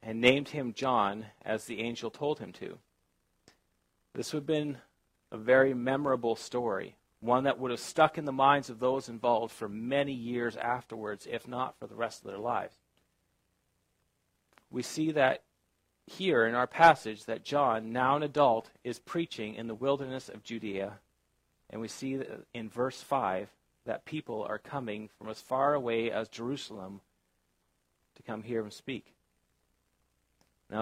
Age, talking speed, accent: 40-59, 160 wpm, American